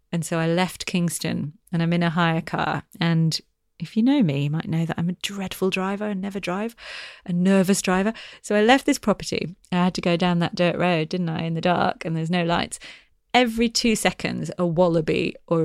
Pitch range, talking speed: 175-230 Hz, 220 wpm